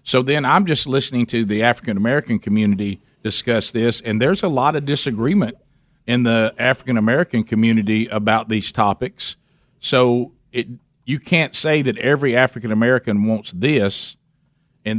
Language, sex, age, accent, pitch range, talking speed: English, male, 50-69, American, 110-135 Hz, 140 wpm